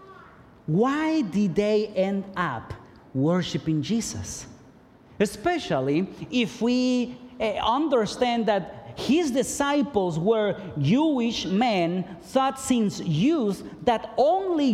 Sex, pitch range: male, 170-240 Hz